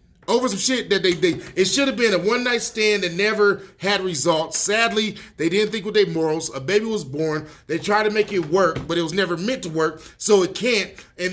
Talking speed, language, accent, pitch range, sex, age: 245 wpm, English, American, 145-195 Hz, male, 30-49